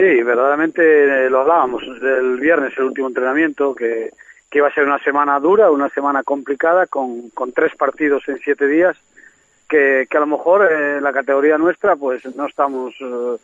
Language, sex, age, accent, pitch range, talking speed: Spanish, male, 40-59, Spanish, 135-160 Hz, 185 wpm